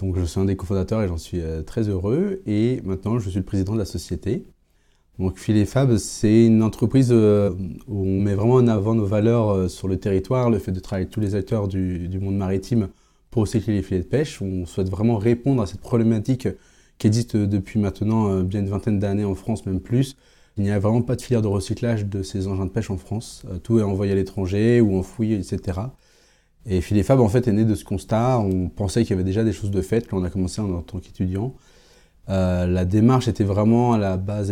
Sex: male